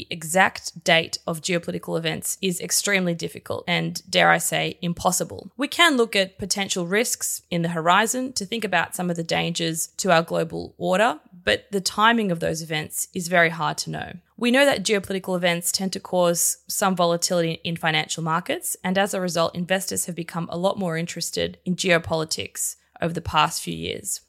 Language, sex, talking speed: English, female, 185 wpm